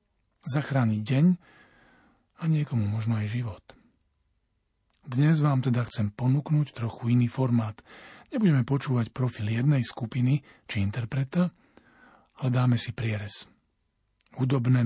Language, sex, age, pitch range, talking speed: Slovak, male, 40-59, 115-135 Hz, 110 wpm